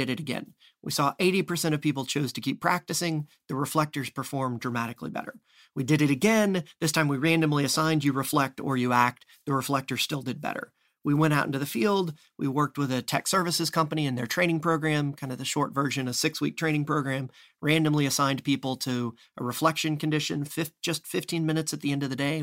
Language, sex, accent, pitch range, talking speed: English, male, American, 135-160 Hz, 210 wpm